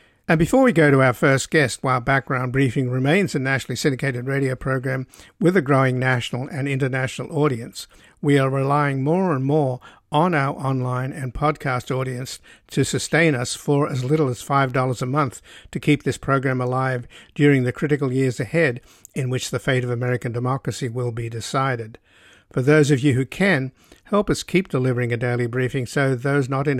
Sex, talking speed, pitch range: male, 185 wpm, 125-140 Hz